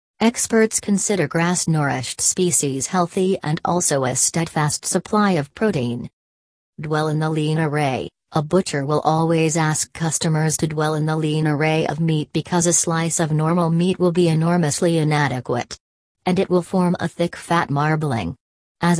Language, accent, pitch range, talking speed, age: English, American, 150-175 Hz, 160 wpm, 40-59